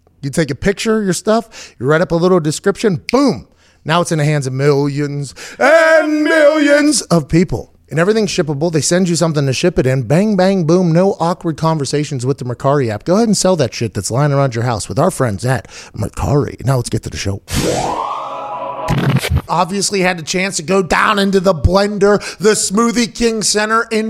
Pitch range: 155-215 Hz